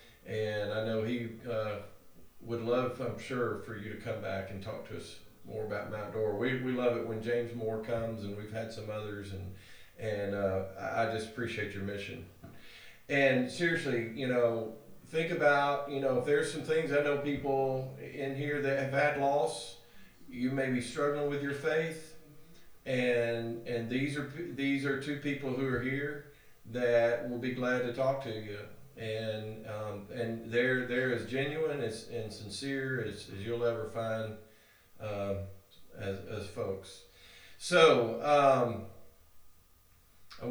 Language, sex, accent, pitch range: English, male, American, 105-135 Hz